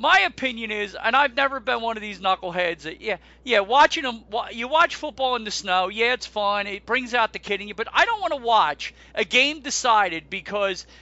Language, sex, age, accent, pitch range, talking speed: English, male, 40-59, American, 180-250 Hz, 230 wpm